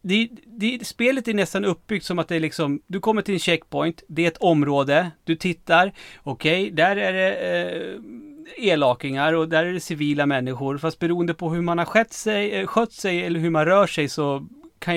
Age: 30-49